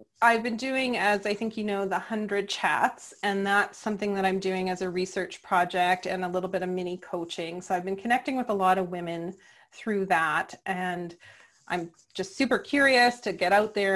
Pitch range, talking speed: 180-205 Hz, 205 wpm